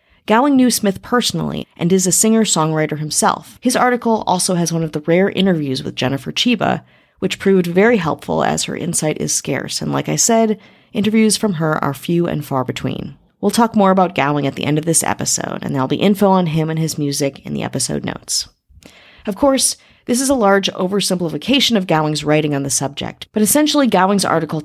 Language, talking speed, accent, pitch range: English, 200 wpm, American, 155-210 Hz